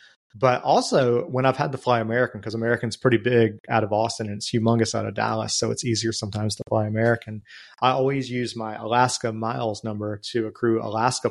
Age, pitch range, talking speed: 30-49, 110-125 Hz, 200 wpm